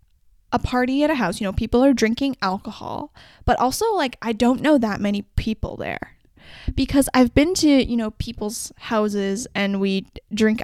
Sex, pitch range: female, 200-265 Hz